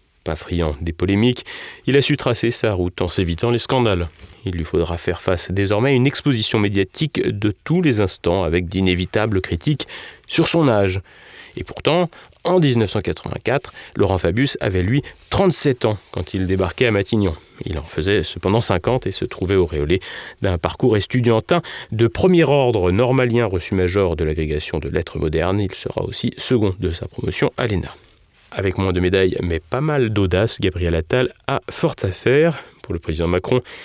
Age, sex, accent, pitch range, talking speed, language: 30-49, male, French, 90-125 Hz, 170 wpm, French